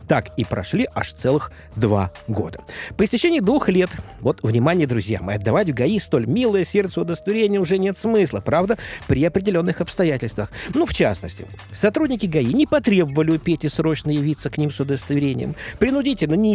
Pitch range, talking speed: 115-185 Hz, 165 wpm